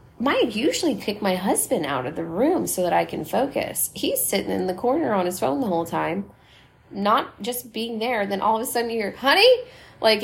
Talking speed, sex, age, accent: 230 wpm, female, 20-39, American